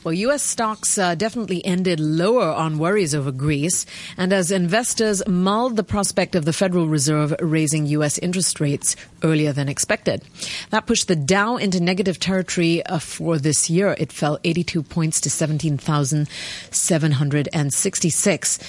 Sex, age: female, 40-59